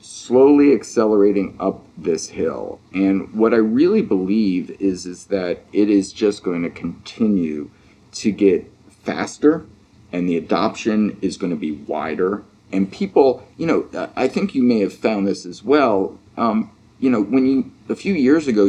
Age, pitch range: 40-59, 95-125 Hz